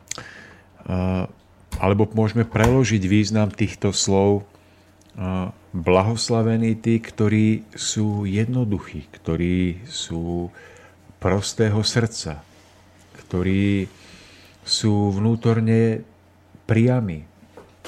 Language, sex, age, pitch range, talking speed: Slovak, male, 50-69, 95-110 Hz, 65 wpm